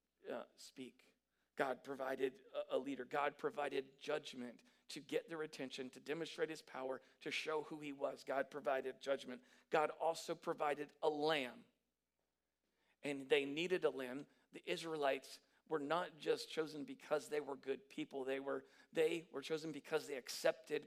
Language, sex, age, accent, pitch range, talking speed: English, male, 40-59, American, 135-170 Hz, 155 wpm